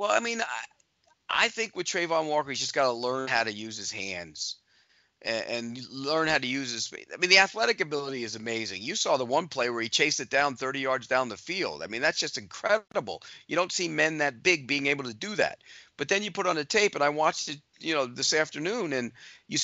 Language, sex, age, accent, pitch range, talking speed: English, male, 40-59, American, 130-200 Hz, 250 wpm